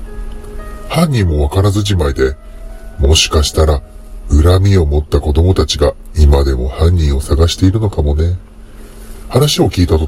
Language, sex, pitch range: Japanese, female, 75-105 Hz